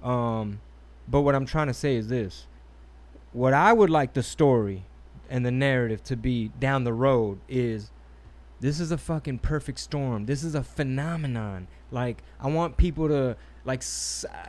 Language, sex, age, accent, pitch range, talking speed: English, male, 20-39, American, 120-165 Hz, 165 wpm